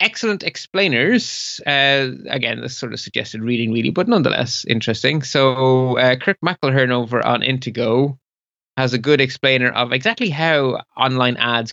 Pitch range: 115-140 Hz